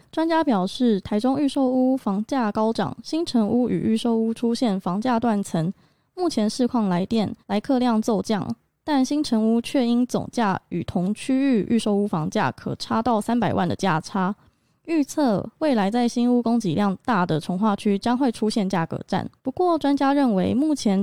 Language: Chinese